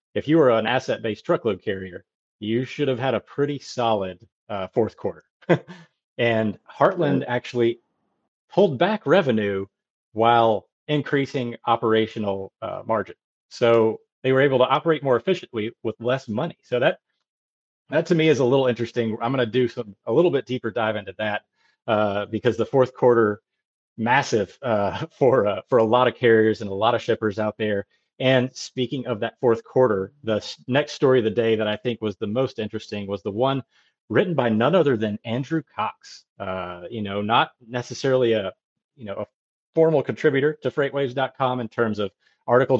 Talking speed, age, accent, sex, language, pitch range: 180 wpm, 30-49, American, male, English, 110-130 Hz